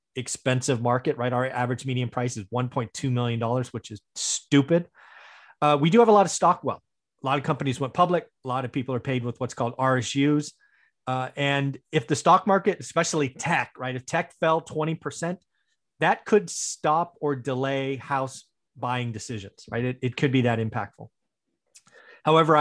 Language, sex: English, male